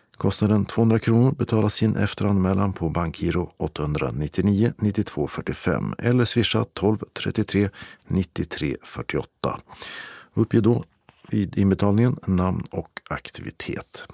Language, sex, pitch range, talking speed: Swedish, male, 95-115 Hz, 100 wpm